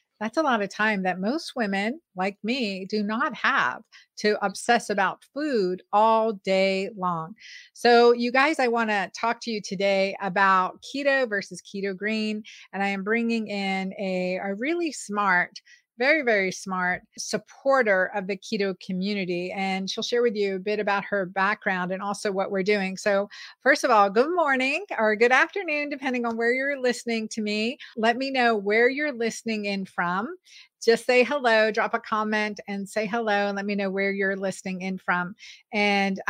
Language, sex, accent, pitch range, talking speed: English, female, American, 195-245 Hz, 180 wpm